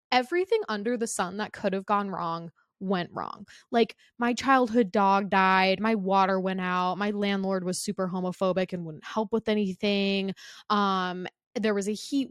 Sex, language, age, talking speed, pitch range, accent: female, English, 20-39, 170 wpm, 185-230 Hz, American